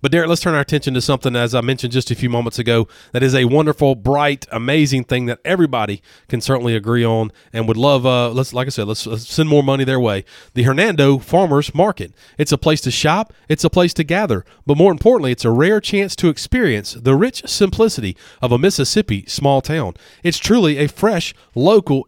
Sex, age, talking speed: male, 30-49, 215 wpm